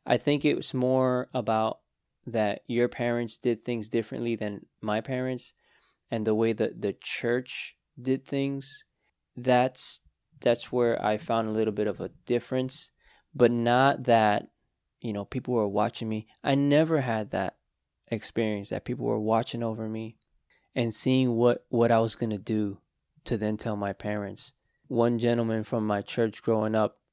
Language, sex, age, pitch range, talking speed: English, male, 20-39, 110-130 Hz, 165 wpm